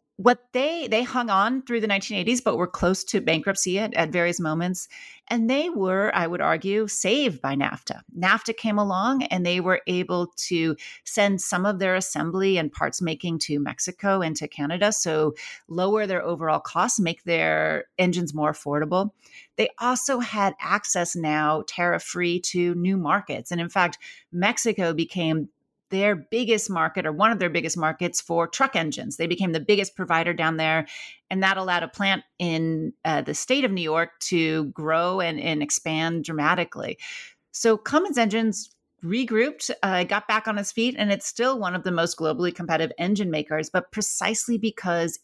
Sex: female